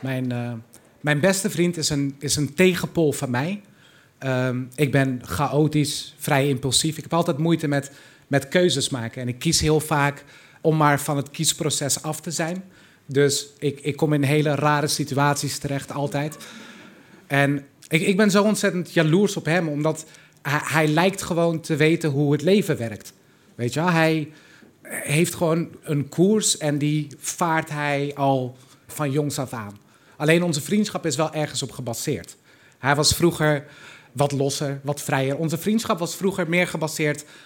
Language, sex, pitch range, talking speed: Dutch, male, 140-170 Hz, 170 wpm